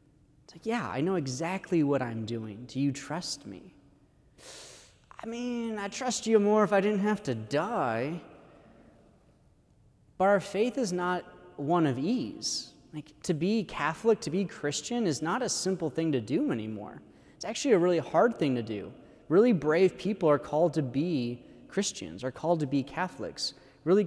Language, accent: English, American